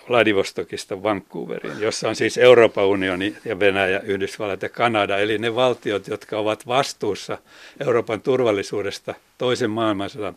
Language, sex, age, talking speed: Finnish, male, 60-79, 125 wpm